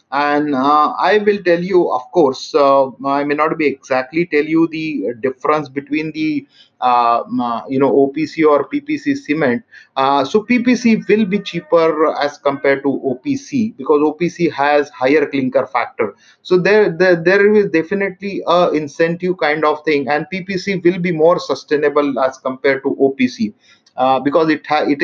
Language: English